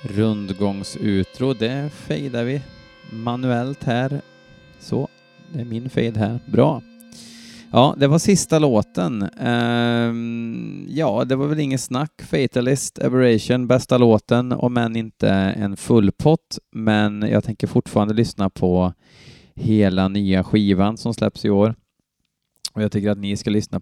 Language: Swedish